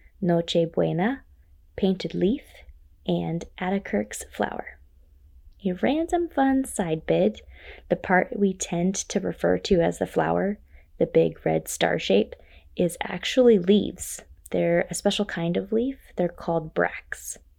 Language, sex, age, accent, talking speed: English, female, 20-39, American, 135 wpm